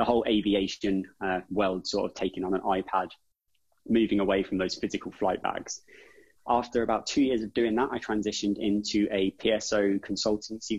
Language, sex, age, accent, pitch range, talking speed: English, male, 20-39, British, 95-110 Hz, 170 wpm